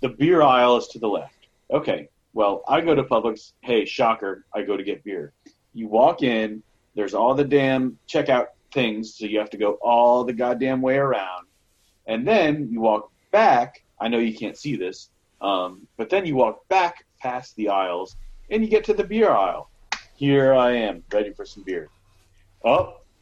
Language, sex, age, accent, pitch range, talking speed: English, male, 30-49, American, 100-130 Hz, 190 wpm